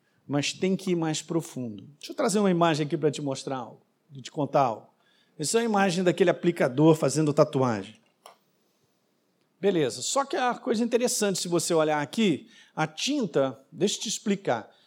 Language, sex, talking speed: Portuguese, male, 180 wpm